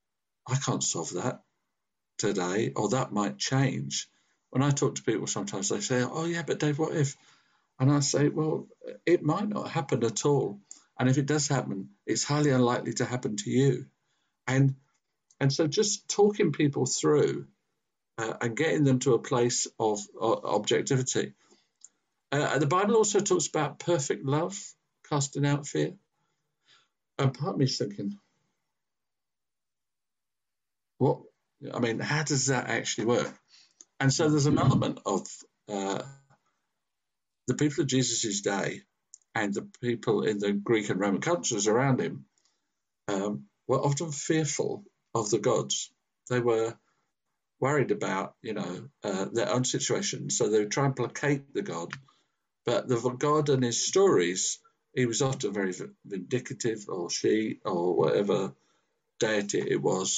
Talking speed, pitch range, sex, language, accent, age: 155 wpm, 120-155 Hz, male, English, British, 50-69